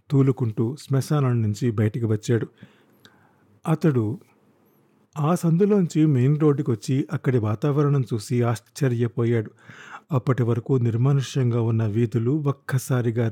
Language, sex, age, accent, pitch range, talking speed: Telugu, male, 50-69, native, 115-150 Hz, 95 wpm